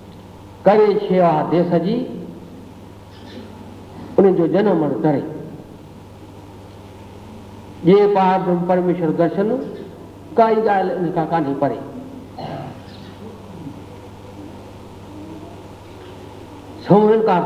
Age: 60-79